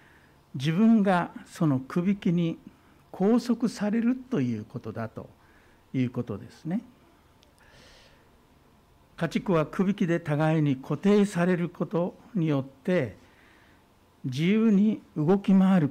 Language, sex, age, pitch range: Japanese, male, 60-79, 125-195 Hz